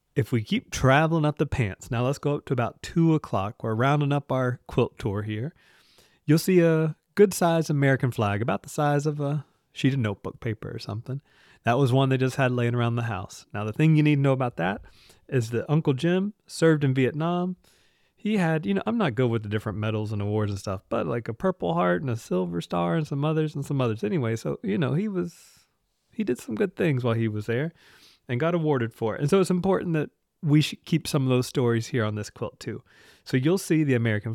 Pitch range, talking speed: 115-155 Hz, 240 wpm